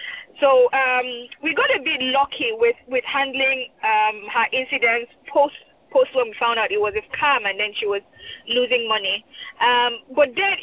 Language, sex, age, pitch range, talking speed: English, female, 20-39, 255-325 Hz, 180 wpm